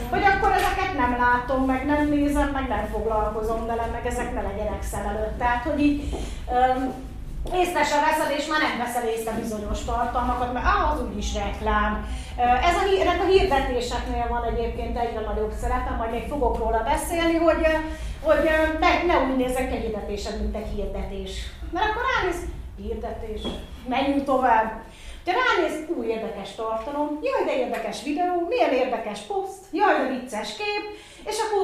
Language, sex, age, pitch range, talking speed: Hungarian, female, 30-49, 230-310 Hz, 160 wpm